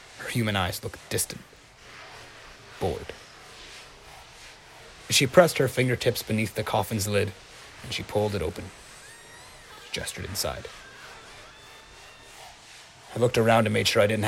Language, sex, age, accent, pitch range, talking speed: English, male, 30-49, American, 105-135 Hz, 120 wpm